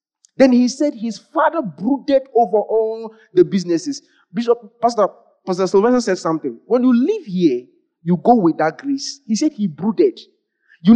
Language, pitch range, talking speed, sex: English, 180-270 Hz, 165 wpm, male